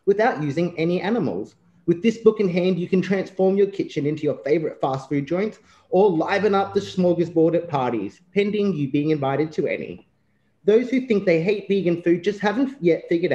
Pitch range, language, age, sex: 155-210 Hz, English, 30-49, male